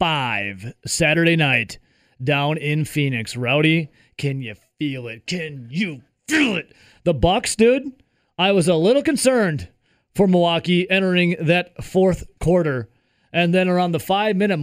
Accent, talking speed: American, 140 wpm